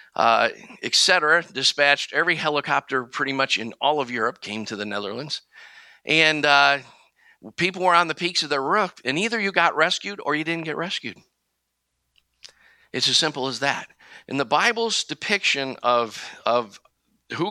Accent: American